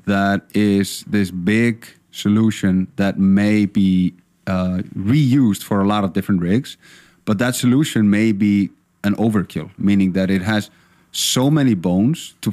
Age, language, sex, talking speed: 30-49, English, male, 150 wpm